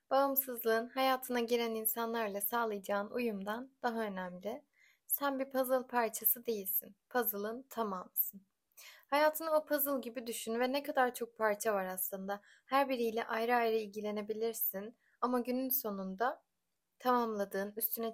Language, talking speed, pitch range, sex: Turkish, 120 wpm, 215-255 Hz, female